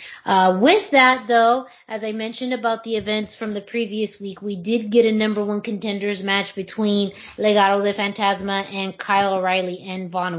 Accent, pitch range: American, 185-210 Hz